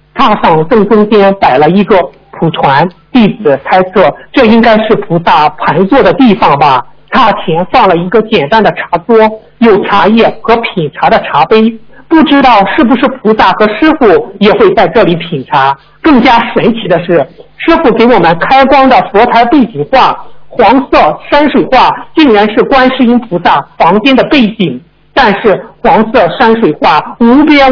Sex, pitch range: male, 195-250 Hz